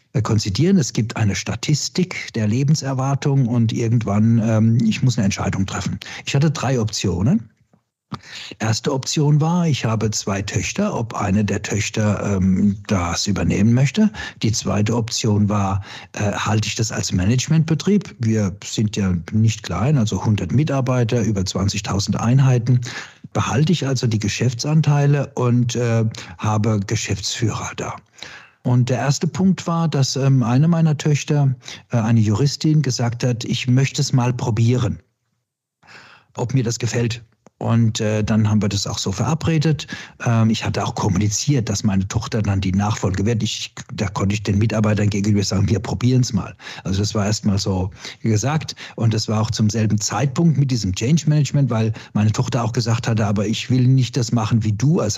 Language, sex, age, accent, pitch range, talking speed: German, male, 60-79, German, 105-135 Hz, 165 wpm